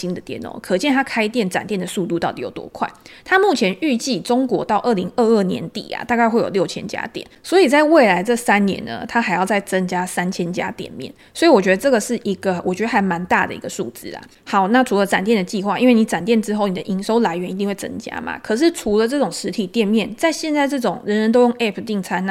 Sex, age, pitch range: female, 20-39, 195-245 Hz